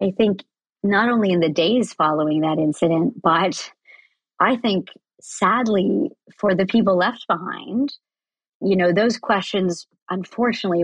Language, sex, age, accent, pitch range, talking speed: English, male, 40-59, American, 180-245 Hz, 135 wpm